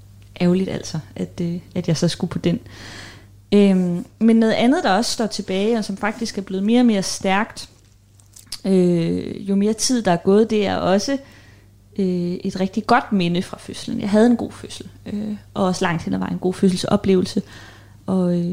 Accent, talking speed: native, 180 wpm